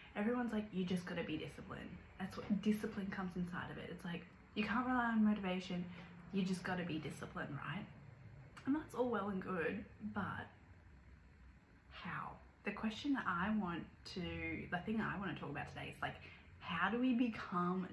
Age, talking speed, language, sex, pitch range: 20-39, 190 wpm, English, female, 160-195 Hz